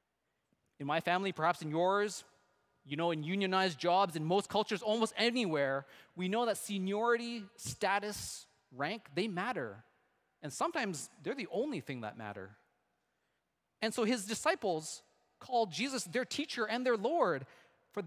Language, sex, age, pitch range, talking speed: English, male, 20-39, 155-225 Hz, 145 wpm